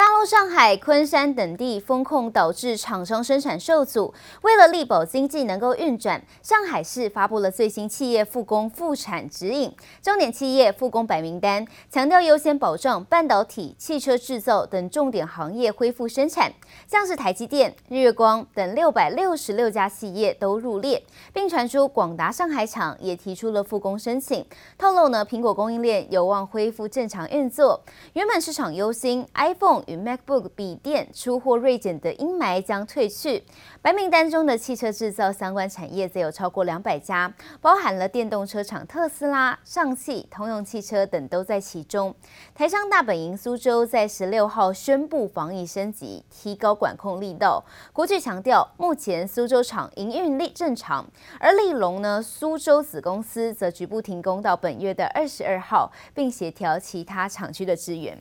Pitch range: 195-290 Hz